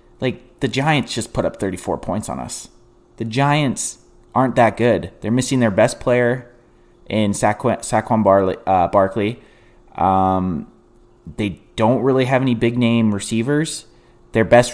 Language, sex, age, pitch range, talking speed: English, male, 30-49, 105-125 Hz, 145 wpm